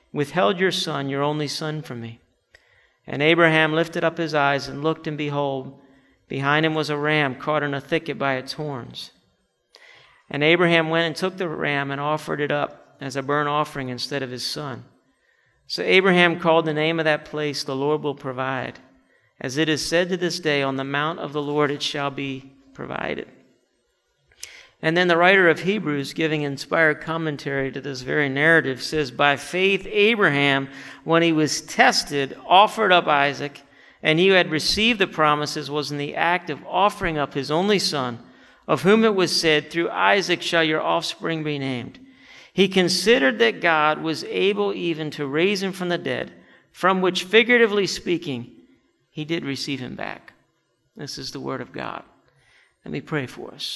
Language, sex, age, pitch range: English, male, 50-69, 140-170 Hz